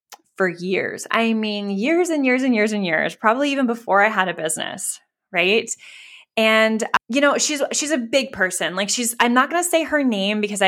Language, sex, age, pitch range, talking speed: English, female, 20-39, 190-255 Hz, 200 wpm